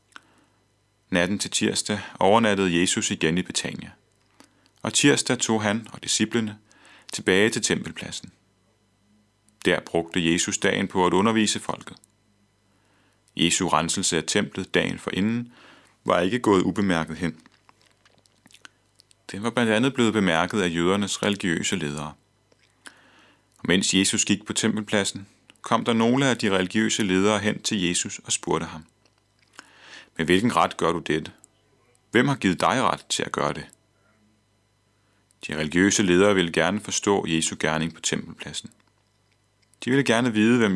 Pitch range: 90-110 Hz